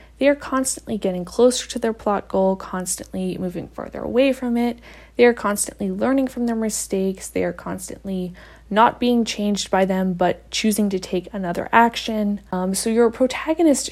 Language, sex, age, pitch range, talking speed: English, female, 20-39, 185-230 Hz, 175 wpm